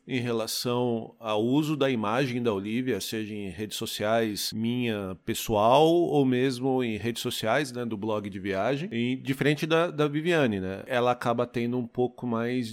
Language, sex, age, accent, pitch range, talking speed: Portuguese, male, 40-59, Brazilian, 110-145 Hz, 165 wpm